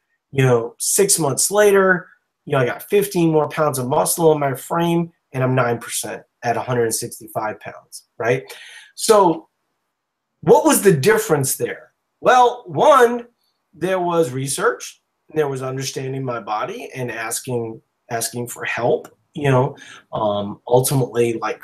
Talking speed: 140 wpm